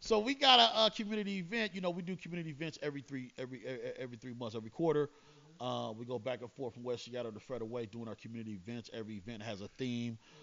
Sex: male